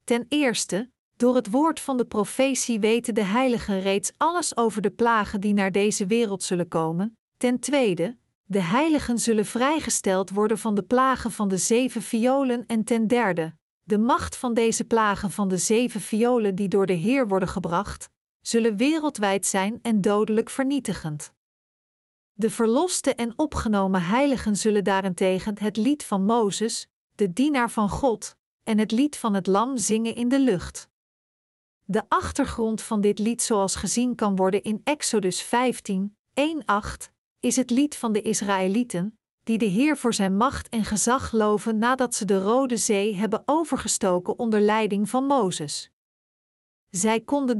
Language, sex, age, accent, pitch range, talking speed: Dutch, female, 50-69, Dutch, 205-245 Hz, 160 wpm